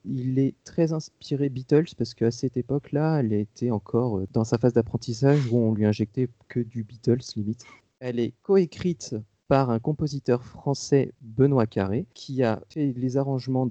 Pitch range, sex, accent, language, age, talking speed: 115-140 Hz, male, French, French, 40-59, 170 wpm